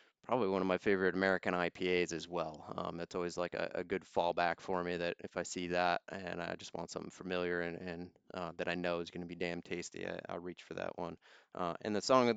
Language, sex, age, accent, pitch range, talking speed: English, male, 20-39, American, 85-95 Hz, 255 wpm